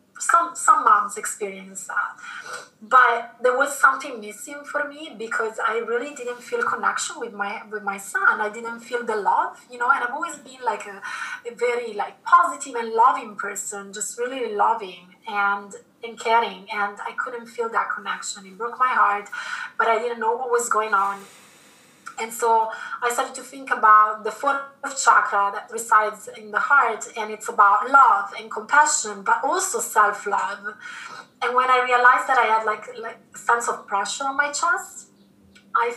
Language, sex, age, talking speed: English, female, 20-39, 180 wpm